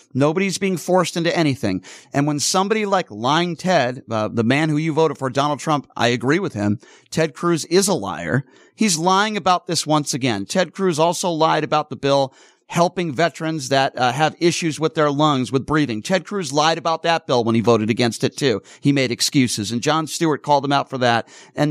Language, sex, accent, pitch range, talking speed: English, male, American, 140-195 Hz, 215 wpm